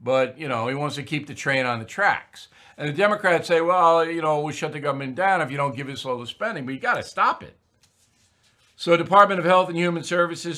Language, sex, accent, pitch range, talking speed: English, male, American, 115-155 Hz, 255 wpm